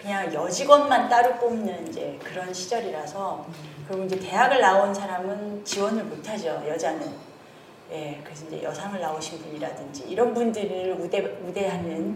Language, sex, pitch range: Korean, female, 170-215 Hz